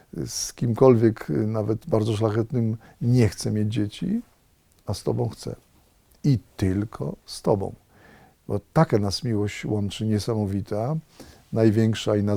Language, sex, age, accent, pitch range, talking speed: Polish, male, 40-59, native, 100-120 Hz, 125 wpm